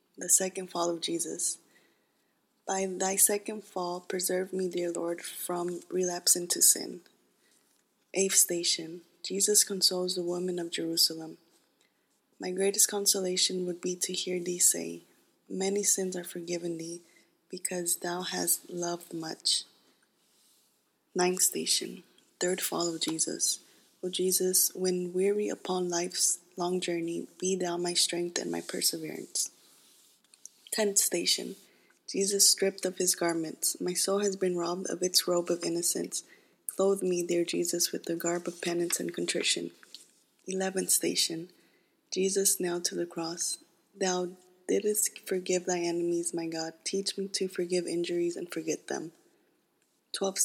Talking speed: 140 wpm